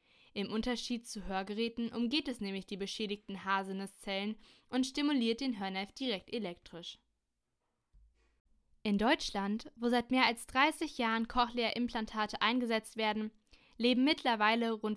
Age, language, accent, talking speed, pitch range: 10-29, German, German, 120 wpm, 195-240 Hz